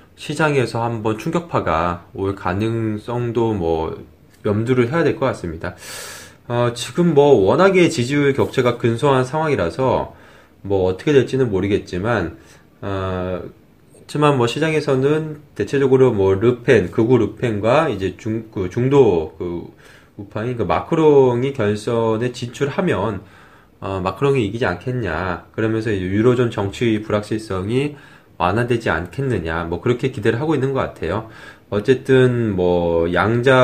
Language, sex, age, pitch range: Korean, male, 20-39, 100-130 Hz